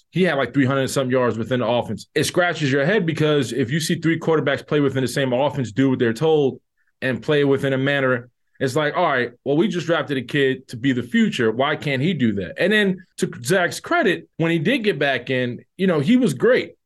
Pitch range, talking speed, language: 125-155 Hz, 245 wpm, English